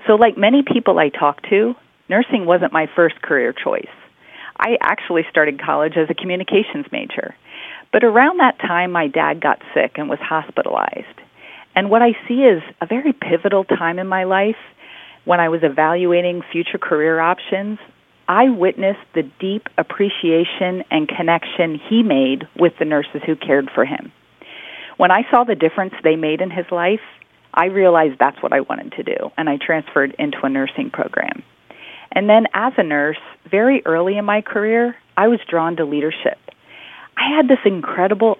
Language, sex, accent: English, female, American